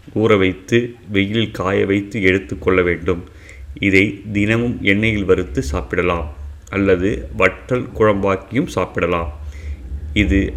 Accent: native